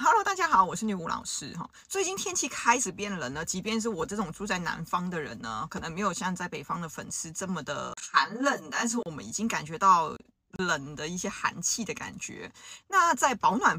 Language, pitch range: Chinese, 185-235 Hz